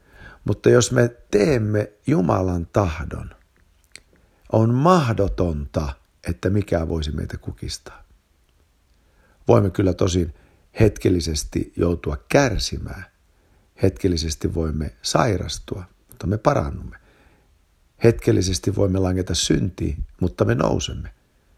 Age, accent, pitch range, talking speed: 60-79, native, 80-105 Hz, 90 wpm